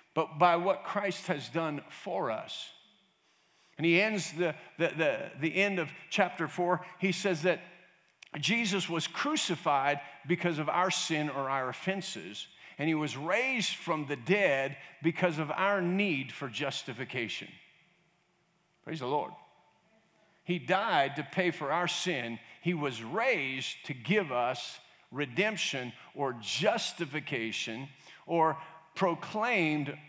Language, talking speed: English, 130 wpm